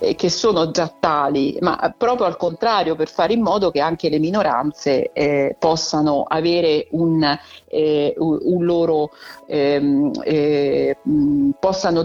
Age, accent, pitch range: 50-69, native, 150-175 Hz